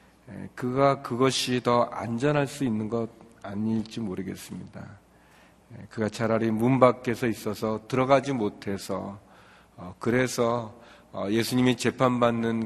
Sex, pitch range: male, 110-130 Hz